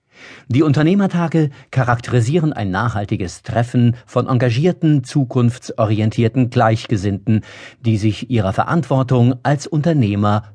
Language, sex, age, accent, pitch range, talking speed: German, male, 50-69, German, 110-140 Hz, 90 wpm